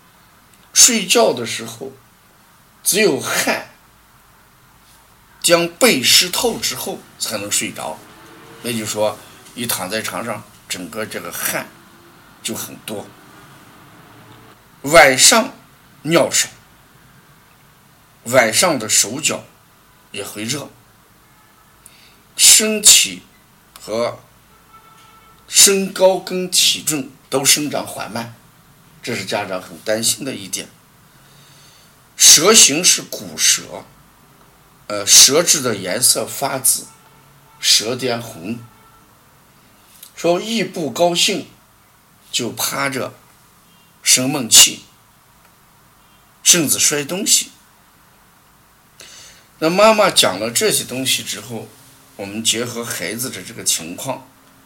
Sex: male